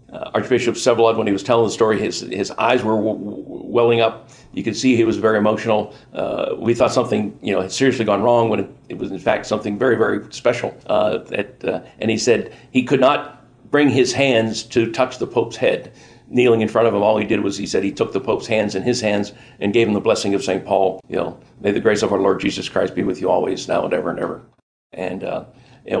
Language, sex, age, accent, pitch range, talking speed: English, male, 50-69, American, 110-125 Hz, 250 wpm